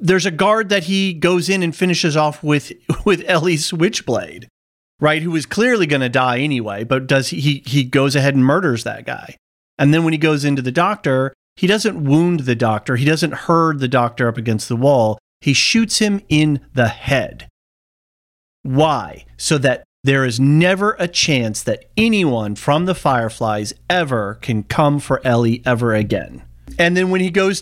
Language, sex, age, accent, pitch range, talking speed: English, male, 40-59, American, 120-165 Hz, 185 wpm